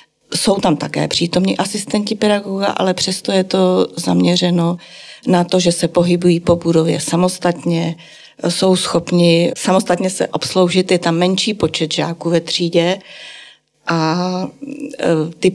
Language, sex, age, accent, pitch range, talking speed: Czech, female, 40-59, native, 165-185 Hz, 125 wpm